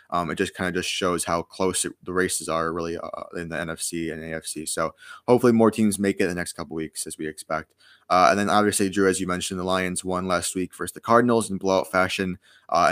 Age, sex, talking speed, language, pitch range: 20-39, male, 255 wpm, English, 90-100 Hz